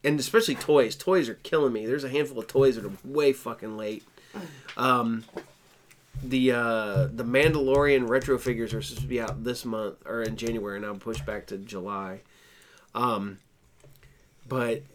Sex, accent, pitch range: male, American, 120-140 Hz